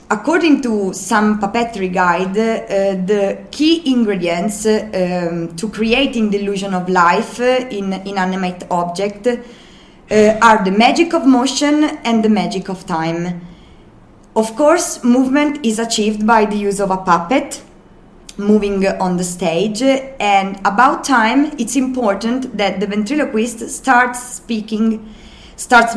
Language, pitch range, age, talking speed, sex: Italian, 195-245 Hz, 20-39, 135 wpm, female